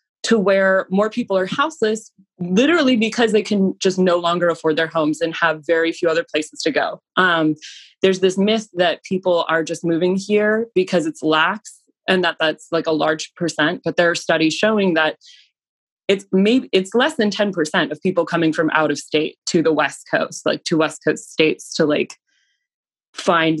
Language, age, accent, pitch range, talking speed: English, 20-39, American, 165-200 Hz, 190 wpm